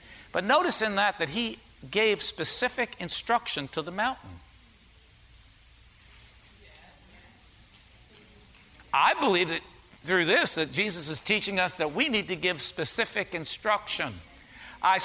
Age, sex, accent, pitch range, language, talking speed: 50-69, male, American, 120-195 Hz, English, 120 wpm